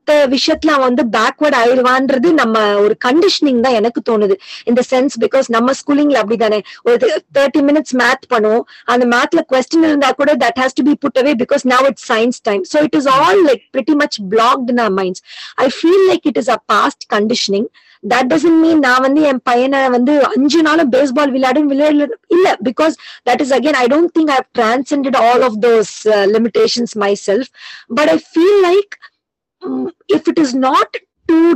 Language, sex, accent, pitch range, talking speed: Tamil, female, native, 235-305 Hz, 195 wpm